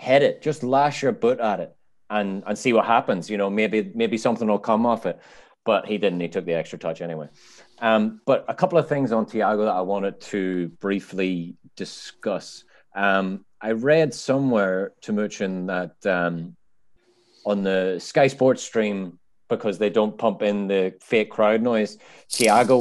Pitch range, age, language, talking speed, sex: 95-115 Hz, 30-49, English, 180 wpm, male